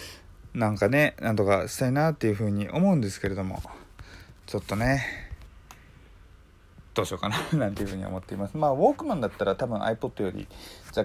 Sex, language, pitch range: male, Japanese, 95-115 Hz